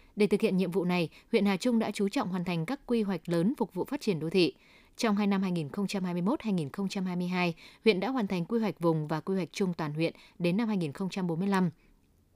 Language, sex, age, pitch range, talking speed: Vietnamese, female, 20-39, 170-215 Hz, 215 wpm